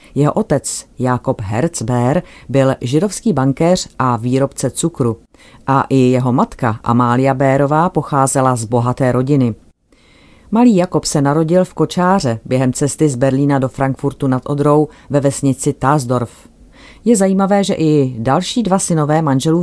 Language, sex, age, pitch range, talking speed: Czech, female, 40-59, 125-160 Hz, 140 wpm